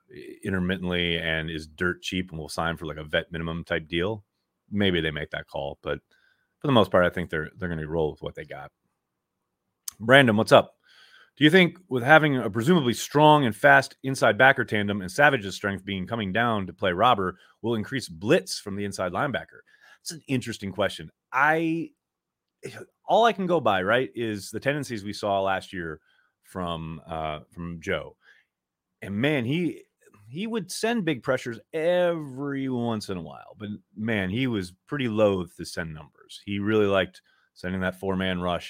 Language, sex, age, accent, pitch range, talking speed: English, male, 30-49, American, 85-120 Hz, 185 wpm